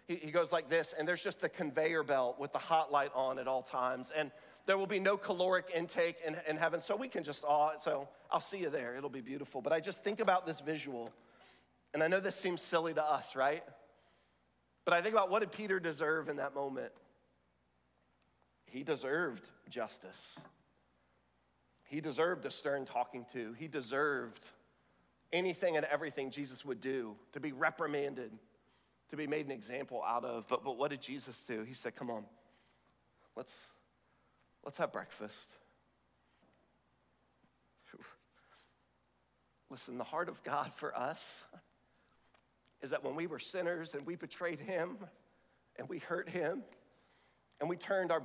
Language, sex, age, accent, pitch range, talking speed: English, male, 40-59, American, 130-170 Hz, 170 wpm